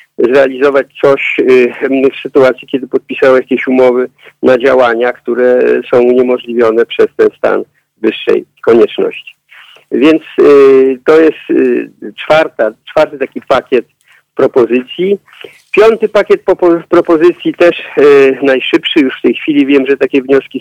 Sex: male